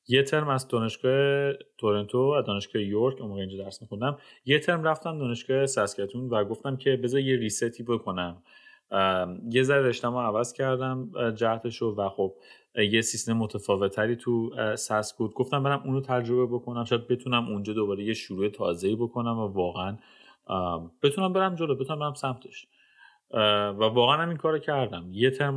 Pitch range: 105-130 Hz